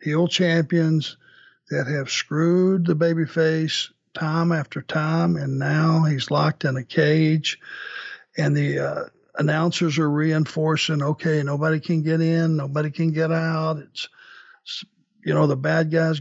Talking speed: 150 wpm